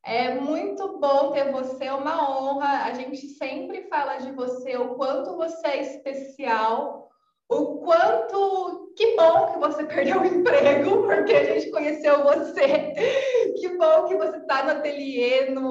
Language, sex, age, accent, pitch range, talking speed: Portuguese, female, 20-39, Brazilian, 250-300 Hz, 155 wpm